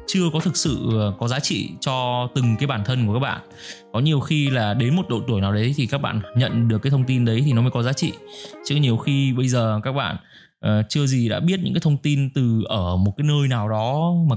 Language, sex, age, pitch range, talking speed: Vietnamese, male, 20-39, 115-150 Hz, 265 wpm